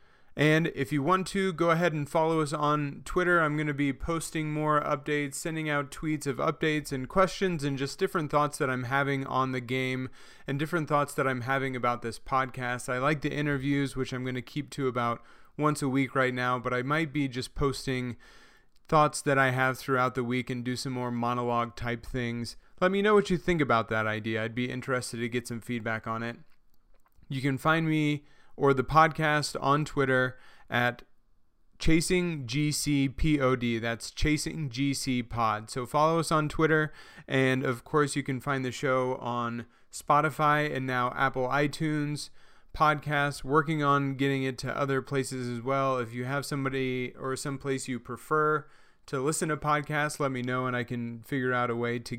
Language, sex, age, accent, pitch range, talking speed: English, male, 30-49, American, 125-150 Hz, 190 wpm